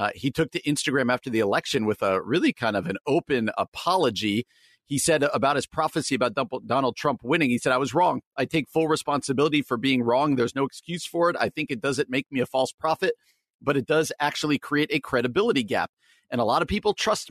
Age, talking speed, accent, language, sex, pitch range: 50-69, 225 wpm, American, English, male, 115-150 Hz